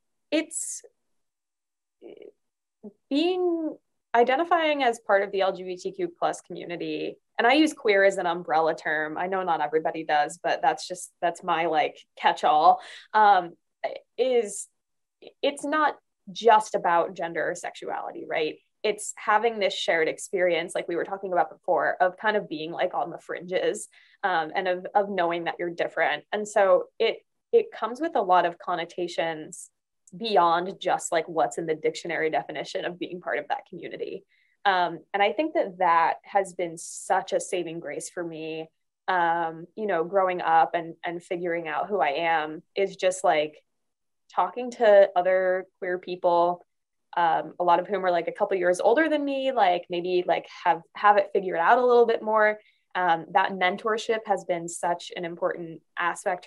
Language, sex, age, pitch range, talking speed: English, female, 20-39, 170-230 Hz, 170 wpm